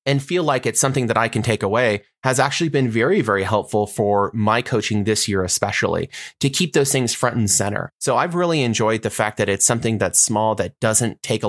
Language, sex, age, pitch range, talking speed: English, male, 30-49, 105-120 Hz, 230 wpm